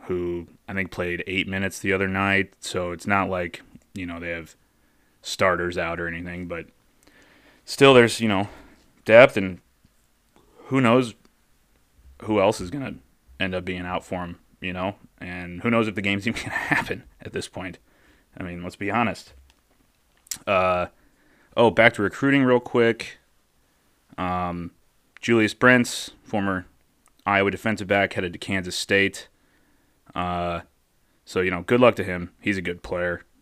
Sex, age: male, 30-49